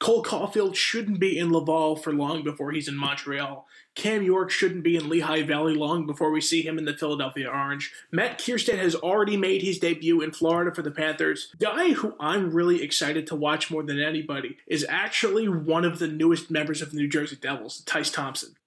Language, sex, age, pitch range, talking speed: English, male, 20-39, 155-190 Hz, 210 wpm